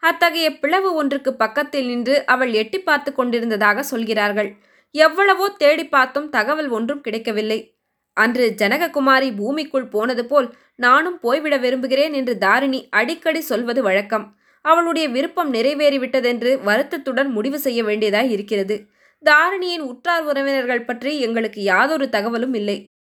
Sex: female